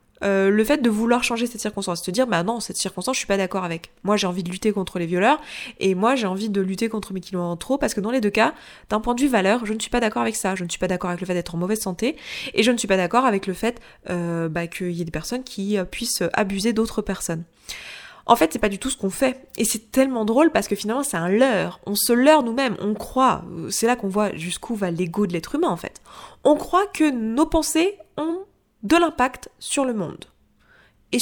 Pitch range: 190-245 Hz